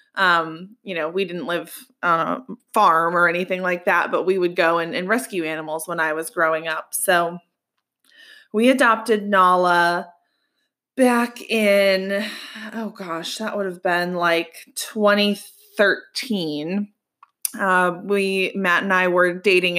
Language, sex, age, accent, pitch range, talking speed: English, female, 20-39, American, 175-215 Hz, 145 wpm